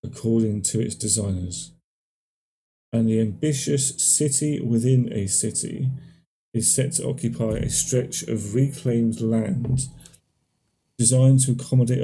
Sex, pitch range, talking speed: male, 110-130 Hz, 115 wpm